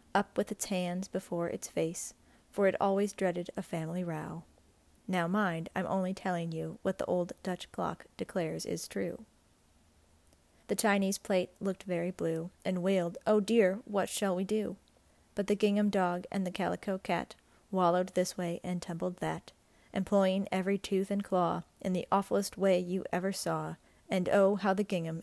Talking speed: 175 wpm